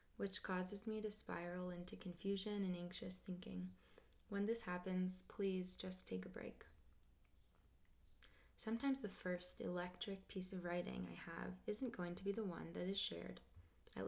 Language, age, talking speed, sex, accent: English, 20-39, 160 wpm, female, American